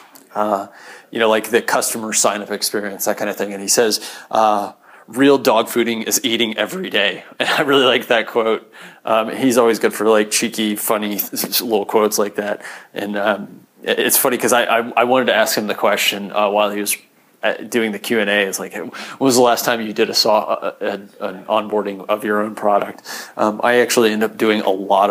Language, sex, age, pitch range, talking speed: English, male, 30-49, 105-120 Hz, 215 wpm